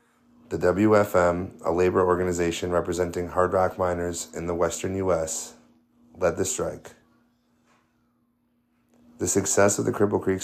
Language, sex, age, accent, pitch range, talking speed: English, male, 30-49, American, 85-95 Hz, 125 wpm